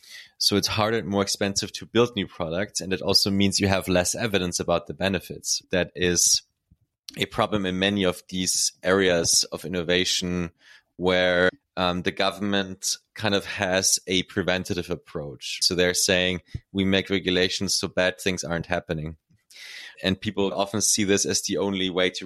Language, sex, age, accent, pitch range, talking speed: English, male, 20-39, German, 90-100 Hz, 170 wpm